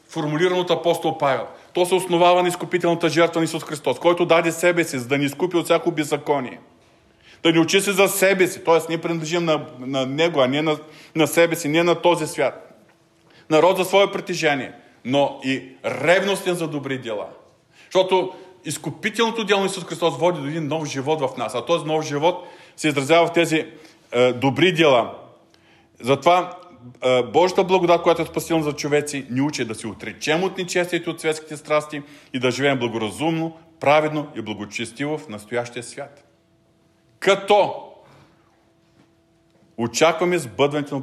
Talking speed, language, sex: 165 wpm, Bulgarian, male